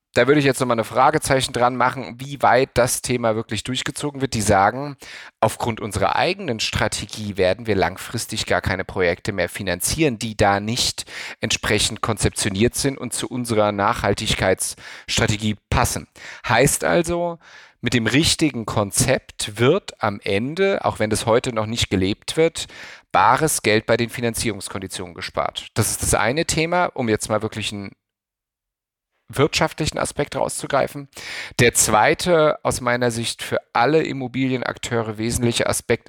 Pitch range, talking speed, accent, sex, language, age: 105-135 Hz, 145 wpm, German, male, German, 40-59